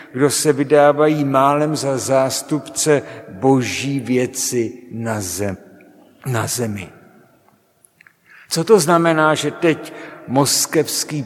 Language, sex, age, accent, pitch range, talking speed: Czech, male, 60-79, native, 125-155 Hz, 90 wpm